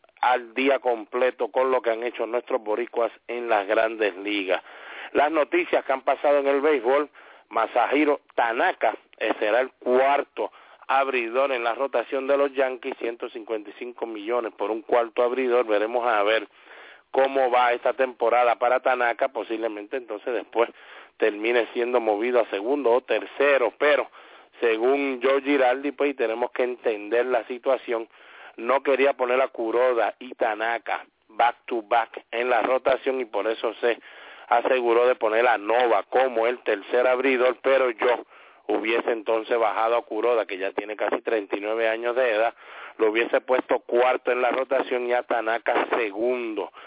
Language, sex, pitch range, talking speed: English, male, 120-135 Hz, 155 wpm